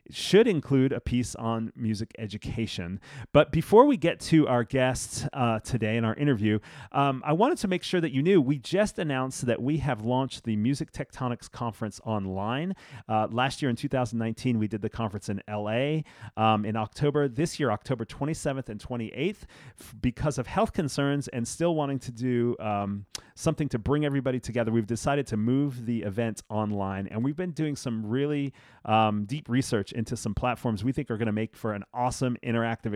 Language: English